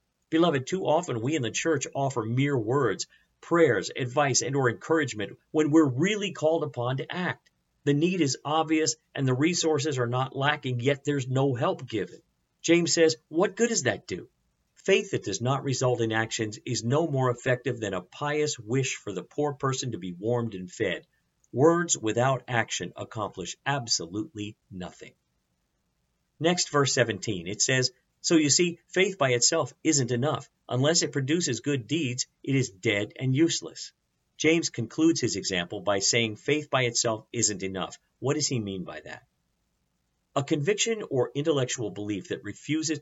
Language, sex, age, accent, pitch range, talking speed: English, male, 50-69, American, 115-155 Hz, 170 wpm